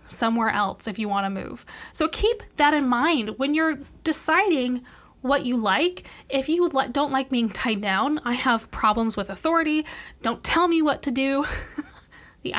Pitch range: 225-295 Hz